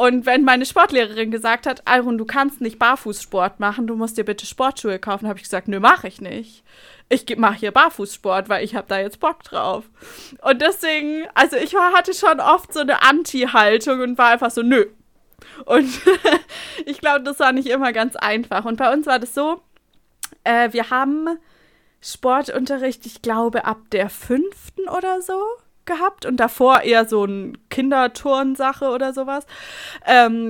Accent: German